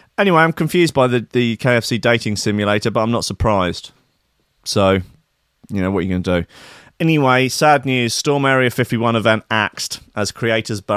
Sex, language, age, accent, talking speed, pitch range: male, English, 30-49, British, 175 wpm, 95-120 Hz